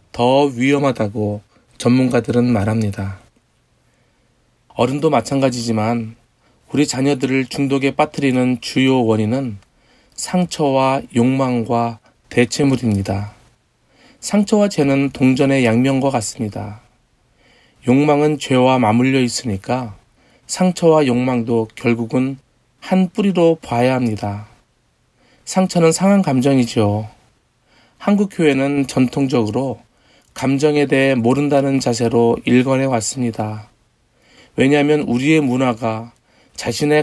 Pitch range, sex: 120-145 Hz, male